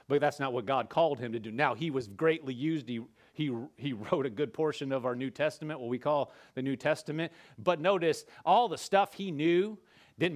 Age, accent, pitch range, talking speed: 40-59, American, 140-195 Hz, 225 wpm